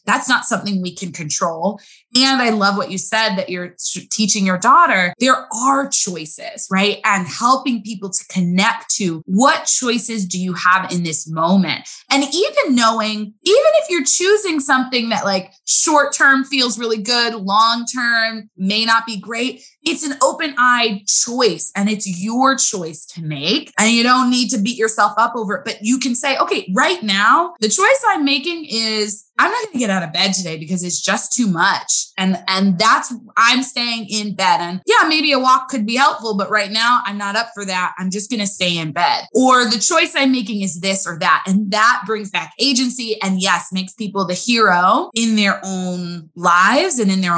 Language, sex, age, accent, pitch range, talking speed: English, female, 20-39, American, 190-255 Hz, 200 wpm